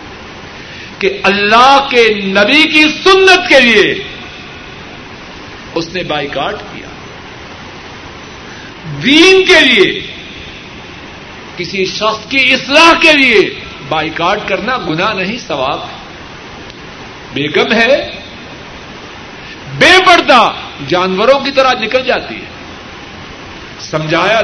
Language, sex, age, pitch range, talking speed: Urdu, male, 60-79, 180-270 Hz, 95 wpm